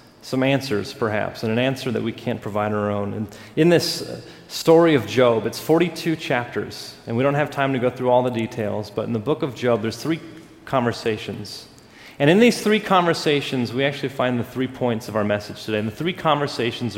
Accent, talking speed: American, 215 wpm